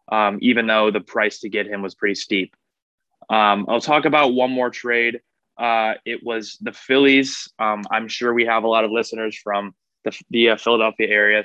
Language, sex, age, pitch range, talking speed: English, male, 20-39, 105-120 Hz, 200 wpm